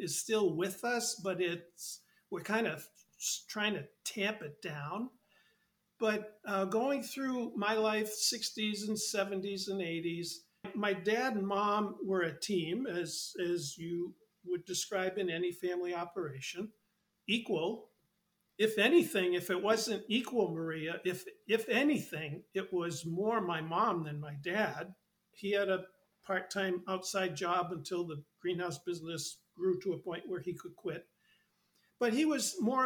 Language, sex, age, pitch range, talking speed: English, male, 50-69, 175-210 Hz, 150 wpm